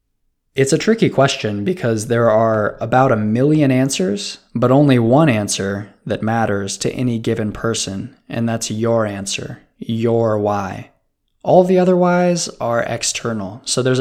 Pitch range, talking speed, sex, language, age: 110-135 Hz, 150 wpm, male, English, 20-39